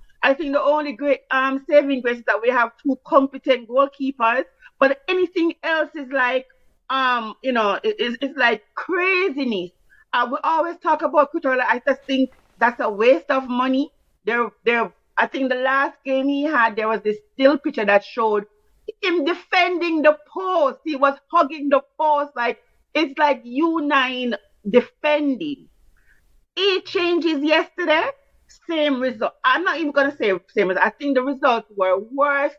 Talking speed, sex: 165 wpm, female